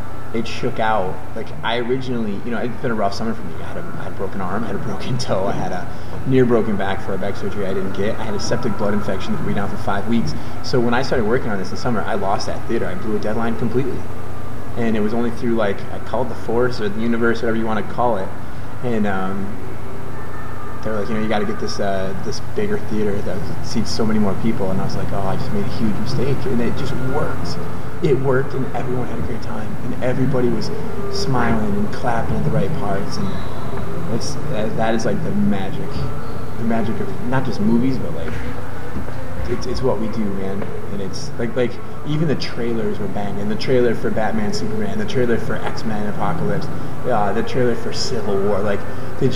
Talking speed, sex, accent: 235 wpm, male, American